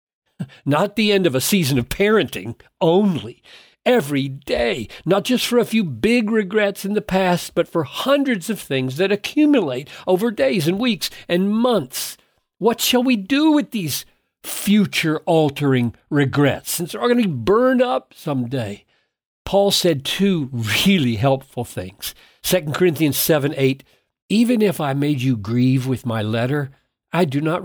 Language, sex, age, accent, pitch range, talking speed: English, male, 50-69, American, 125-185 Hz, 155 wpm